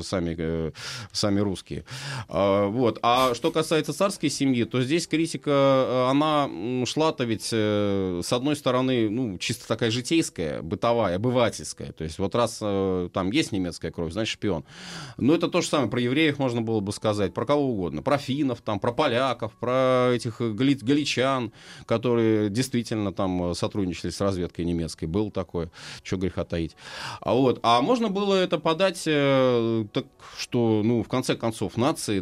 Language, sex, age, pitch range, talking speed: Russian, male, 30-49, 100-140 Hz, 155 wpm